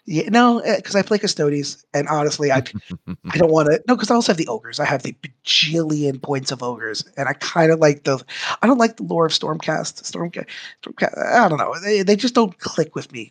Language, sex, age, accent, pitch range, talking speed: English, male, 30-49, American, 130-160 Hz, 240 wpm